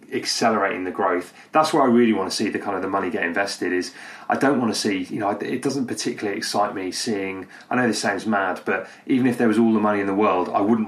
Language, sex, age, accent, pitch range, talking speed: English, male, 30-49, British, 100-115 Hz, 270 wpm